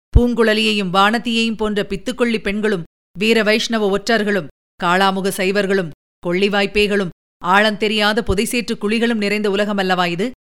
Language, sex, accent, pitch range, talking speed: Tamil, female, native, 190-220 Hz, 105 wpm